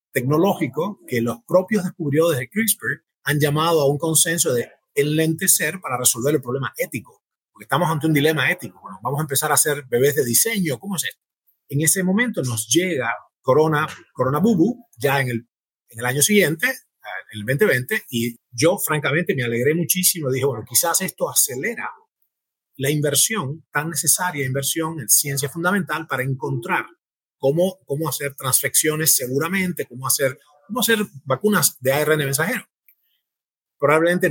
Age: 30-49